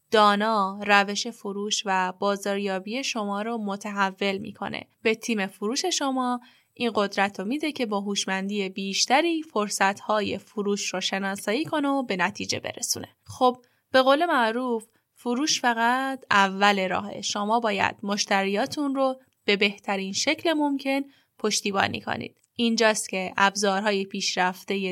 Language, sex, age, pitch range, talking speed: Persian, female, 10-29, 195-245 Hz, 130 wpm